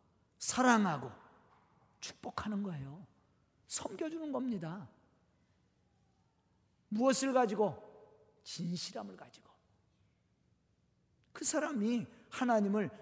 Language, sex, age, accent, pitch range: Korean, male, 40-59, native, 170-265 Hz